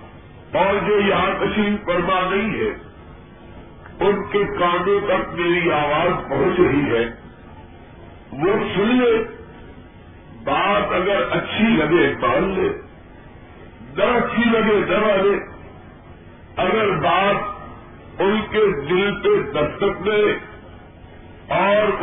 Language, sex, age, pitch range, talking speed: Urdu, male, 50-69, 175-210 Hz, 100 wpm